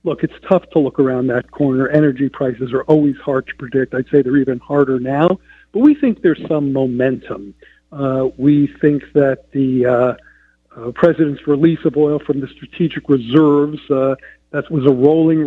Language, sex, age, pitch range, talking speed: English, male, 50-69, 135-160 Hz, 180 wpm